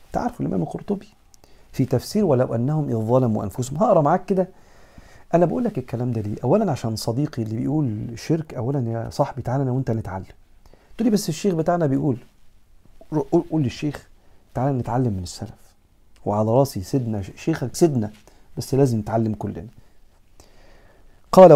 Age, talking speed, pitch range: 50-69, 145 wpm, 110-135 Hz